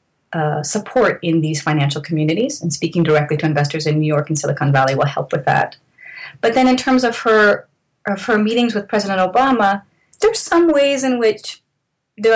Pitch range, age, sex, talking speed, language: 155-200 Hz, 30-49, female, 190 wpm, English